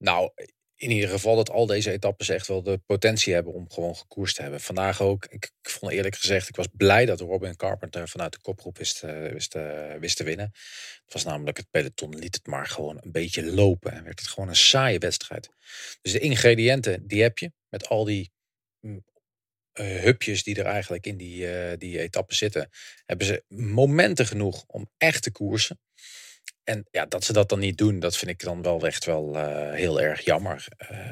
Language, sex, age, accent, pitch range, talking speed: English, male, 40-59, Dutch, 90-110 Hz, 205 wpm